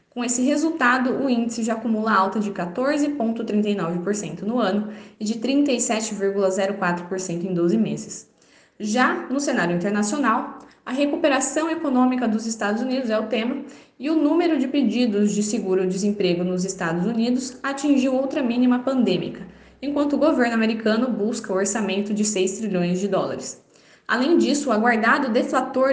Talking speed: 145 wpm